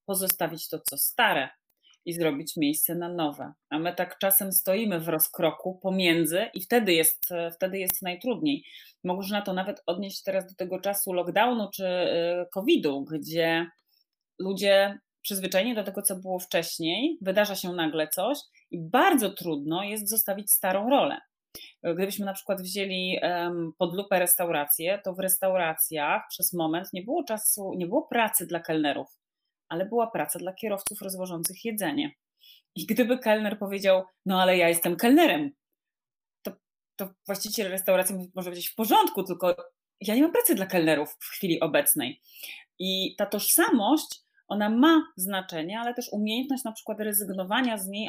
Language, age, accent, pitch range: Polish, 30-49, native, 175-220 Hz